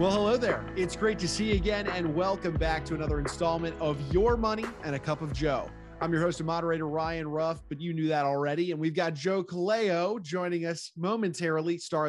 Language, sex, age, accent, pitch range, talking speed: English, male, 20-39, American, 140-185 Hz, 220 wpm